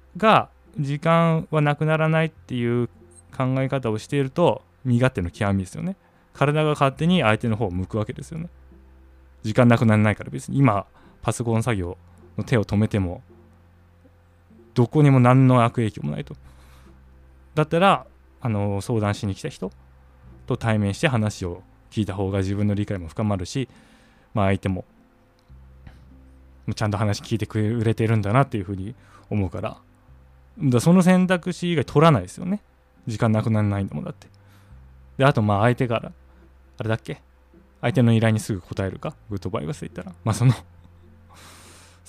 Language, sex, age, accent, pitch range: Japanese, male, 20-39, native, 85-125 Hz